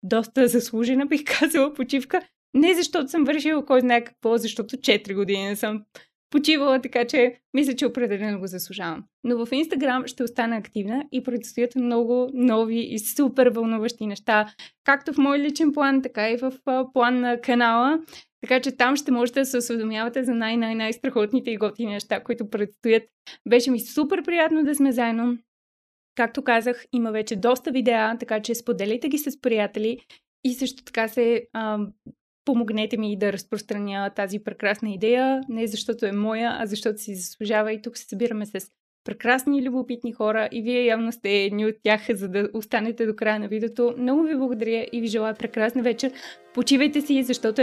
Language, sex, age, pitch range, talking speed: Bulgarian, female, 20-39, 220-260 Hz, 175 wpm